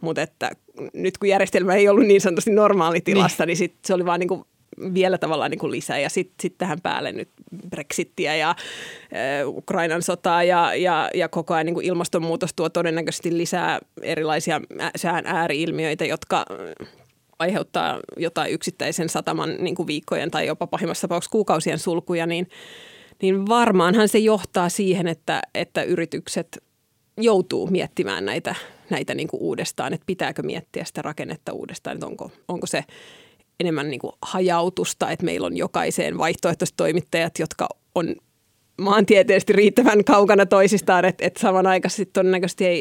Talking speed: 140 wpm